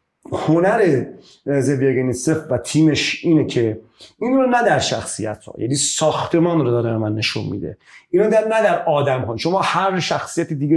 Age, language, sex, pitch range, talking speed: 40-59, Persian, male, 135-195 Hz, 160 wpm